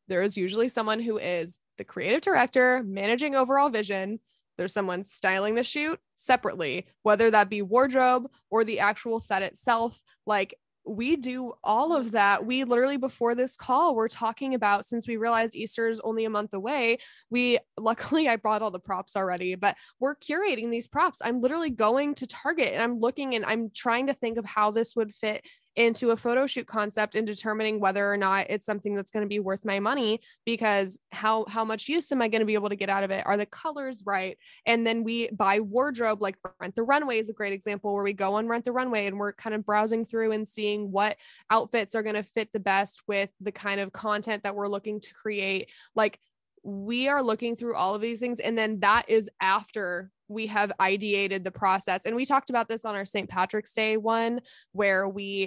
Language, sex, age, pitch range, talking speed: English, female, 20-39, 200-235 Hz, 215 wpm